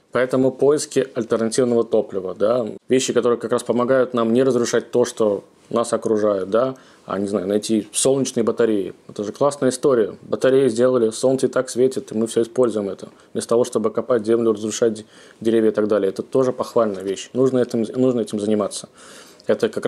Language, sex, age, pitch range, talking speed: Russian, male, 20-39, 110-125 Hz, 180 wpm